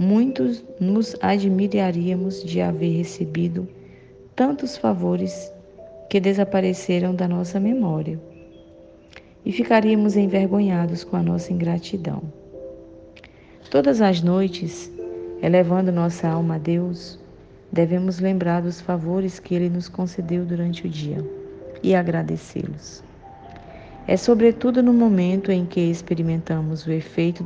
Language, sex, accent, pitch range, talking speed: Portuguese, female, Brazilian, 160-195 Hz, 110 wpm